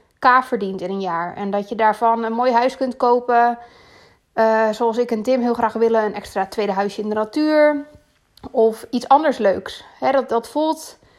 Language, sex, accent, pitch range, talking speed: Dutch, female, Dutch, 215-270 Hz, 200 wpm